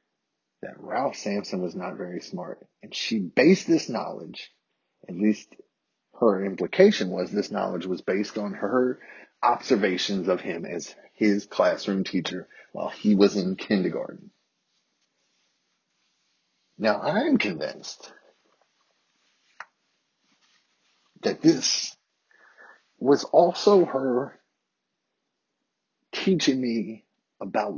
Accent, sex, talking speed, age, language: American, male, 100 wpm, 40-59, English